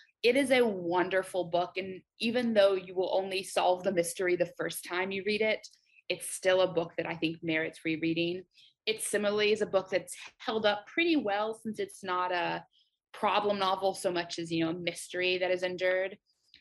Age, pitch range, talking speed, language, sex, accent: 20-39, 180-230 Hz, 200 wpm, English, female, American